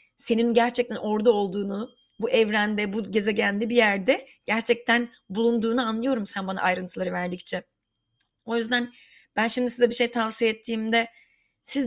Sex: female